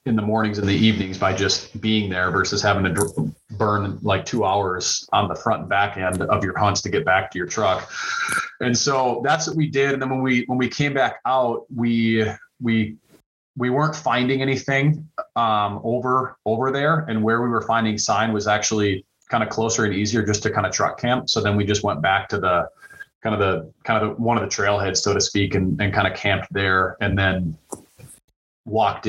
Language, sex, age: English, male, 30-49